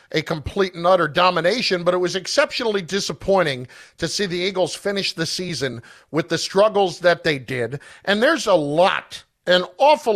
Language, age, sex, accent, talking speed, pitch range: English, 50-69, male, American, 170 wpm, 150-205 Hz